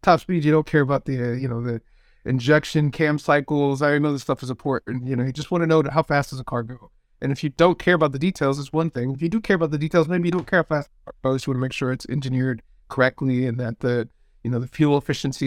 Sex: male